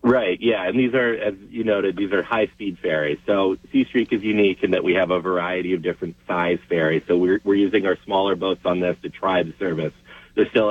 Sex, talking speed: male, 235 wpm